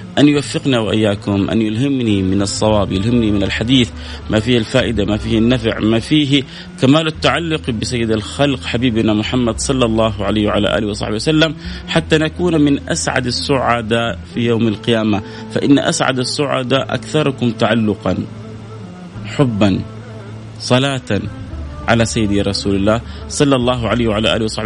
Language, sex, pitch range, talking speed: Arabic, male, 105-125 Hz, 135 wpm